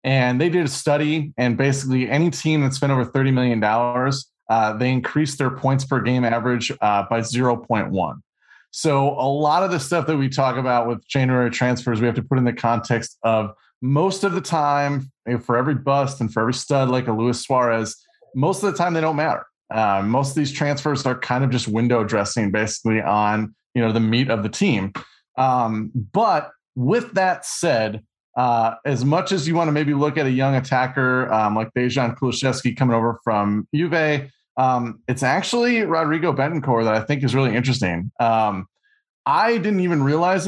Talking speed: 200 wpm